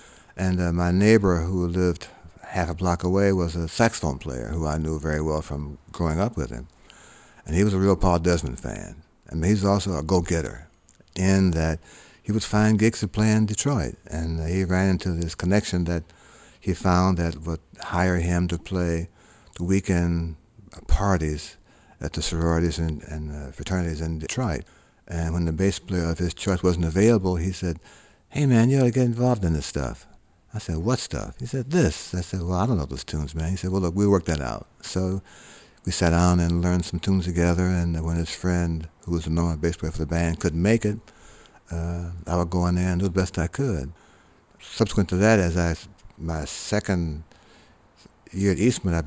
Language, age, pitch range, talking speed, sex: English, 60-79, 80-95 Hz, 210 wpm, male